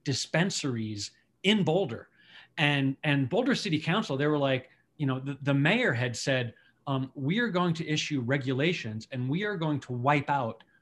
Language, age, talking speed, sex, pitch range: English, 30-49, 175 wpm, male, 130-160 Hz